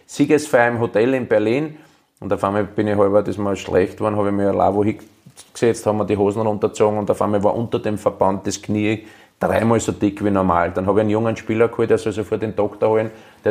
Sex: male